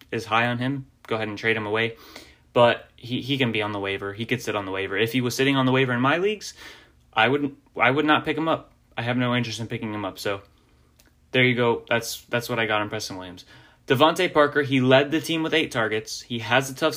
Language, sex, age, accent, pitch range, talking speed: English, male, 10-29, American, 115-145 Hz, 265 wpm